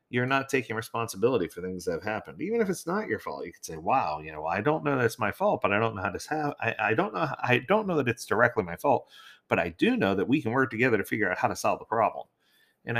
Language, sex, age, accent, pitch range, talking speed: English, male, 30-49, American, 110-150 Hz, 305 wpm